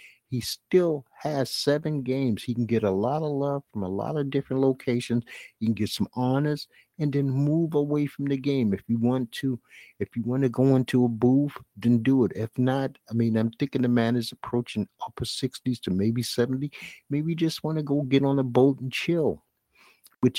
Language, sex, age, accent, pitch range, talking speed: English, male, 50-69, American, 95-130 Hz, 215 wpm